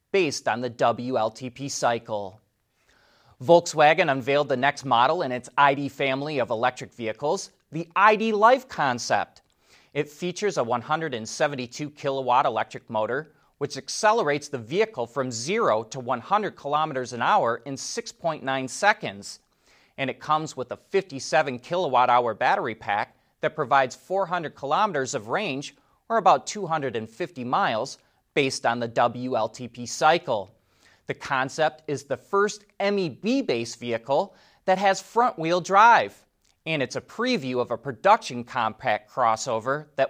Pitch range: 125-160 Hz